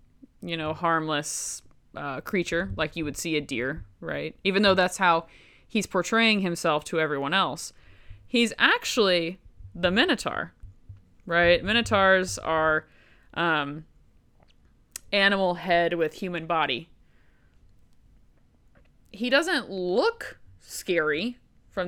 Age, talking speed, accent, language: 20-39, 110 wpm, American, English